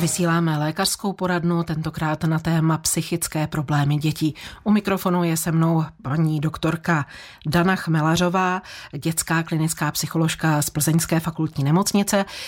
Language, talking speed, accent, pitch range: Czech, 120 wpm, native, 150-175 Hz